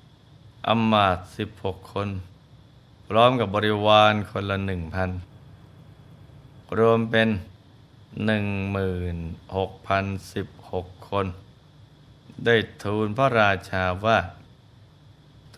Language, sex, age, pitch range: Thai, male, 20-39, 100-125 Hz